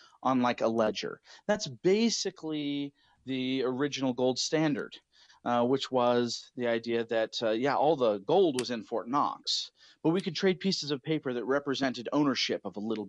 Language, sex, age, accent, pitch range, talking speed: English, male, 40-59, American, 125-185 Hz, 175 wpm